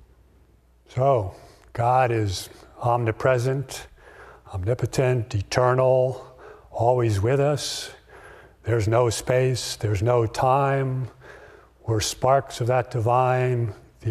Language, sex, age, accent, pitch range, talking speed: English, male, 50-69, American, 110-125 Hz, 90 wpm